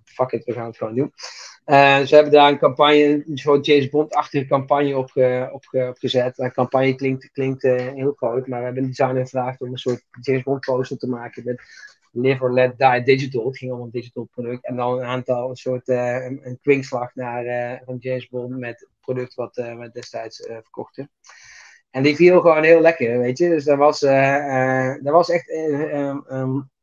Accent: Dutch